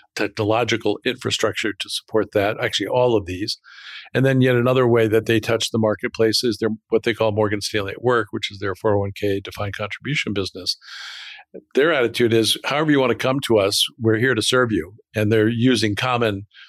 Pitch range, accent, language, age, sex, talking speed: 105-120 Hz, American, English, 50-69, male, 195 wpm